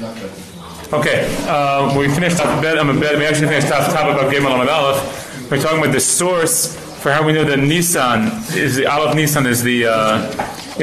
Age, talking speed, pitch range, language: 30-49, 210 wpm, 120-155 Hz, English